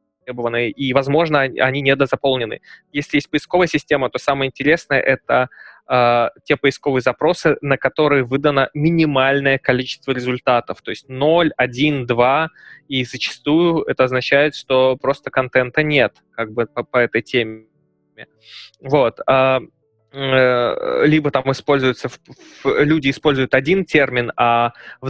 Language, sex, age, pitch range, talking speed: Russian, male, 20-39, 125-150 Hz, 125 wpm